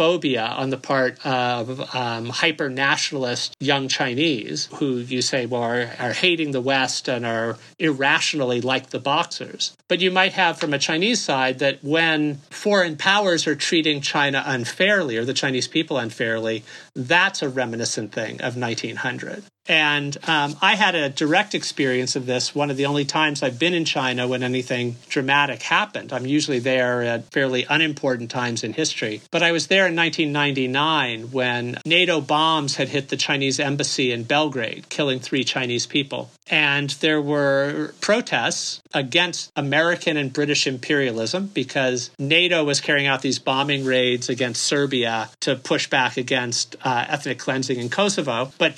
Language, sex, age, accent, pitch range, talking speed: English, male, 50-69, American, 125-155 Hz, 160 wpm